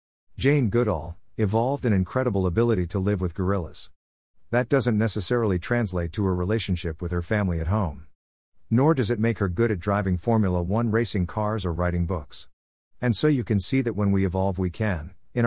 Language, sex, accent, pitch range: English, male, American, 90-115 Hz